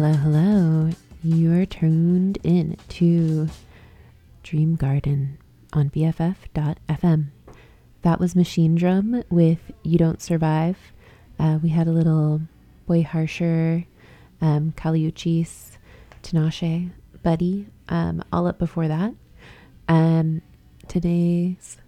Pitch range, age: 155-175 Hz, 20-39